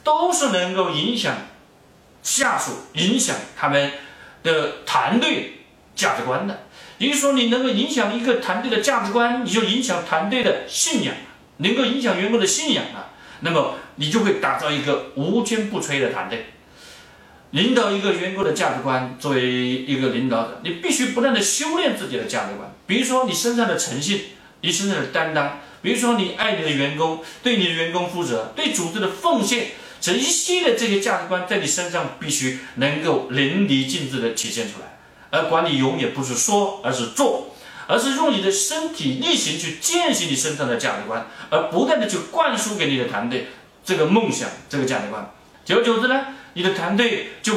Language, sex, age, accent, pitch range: Chinese, male, 40-59, native, 150-245 Hz